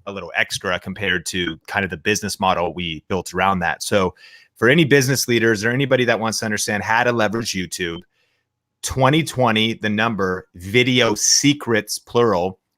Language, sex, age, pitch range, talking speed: English, male, 30-49, 95-115 Hz, 165 wpm